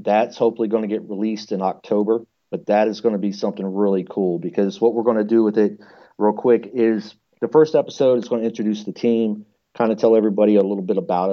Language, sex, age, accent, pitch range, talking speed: English, male, 40-59, American, 105-120 Hz, 240 wpm